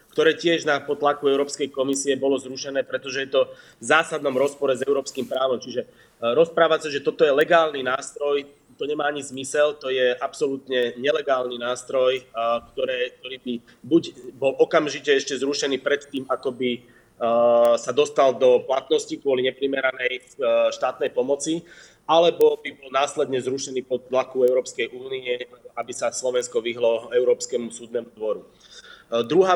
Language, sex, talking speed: Slovak, male, 140 wpm